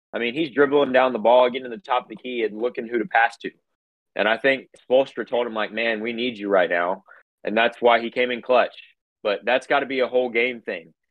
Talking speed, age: 265 wpm, 30-49